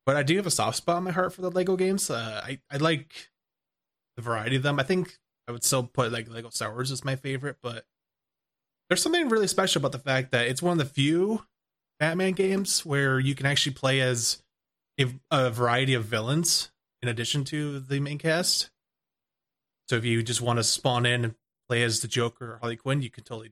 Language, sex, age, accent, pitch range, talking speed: English, male, 20-39, American, 120-160 Hz, 215 wpm